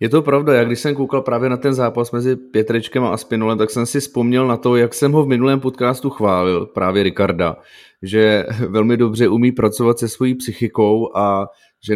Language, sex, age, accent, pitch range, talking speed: Czech, male, 30-49, native, 110-135 Hz, 200 wpm